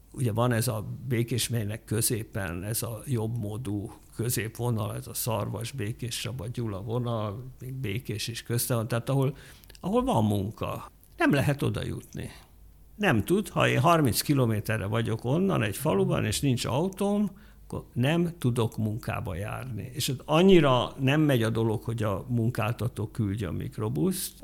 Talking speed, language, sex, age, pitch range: 155 wpm, Hungarian, male, 60-79, 110-135 Hz